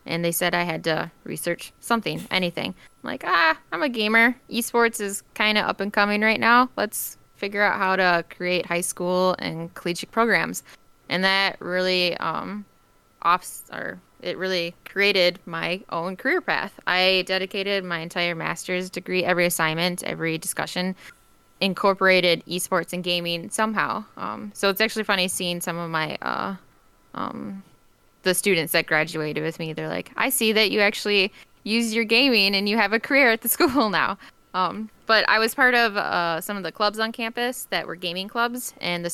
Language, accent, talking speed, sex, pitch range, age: English, American, 180 wpm, female, 175-210 Hz, 10-29